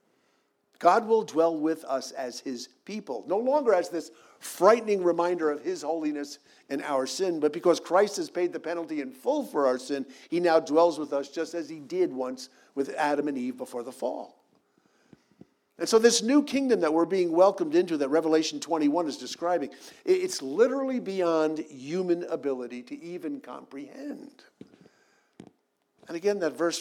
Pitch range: 140-200 Hz